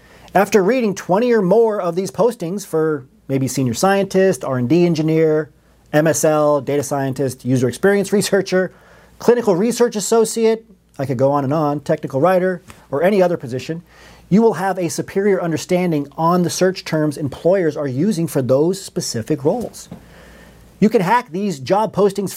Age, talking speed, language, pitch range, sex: 40-59, 155 wpm, English, 155-205 Hz, male